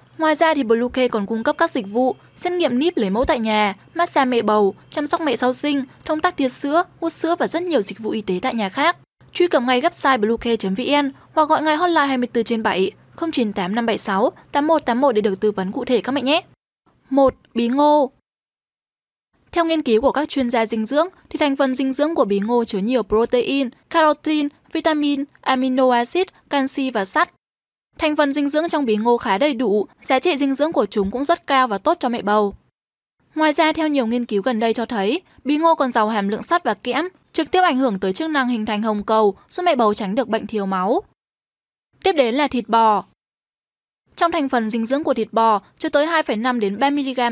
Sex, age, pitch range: female, 10-29, 225-310 Hz